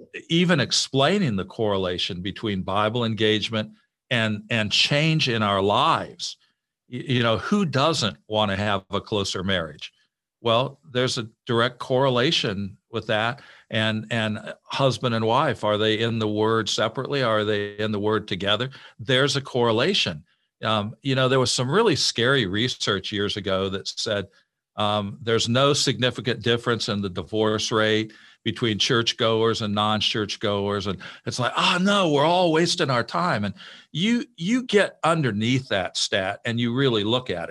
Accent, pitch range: American, 105-125 Hz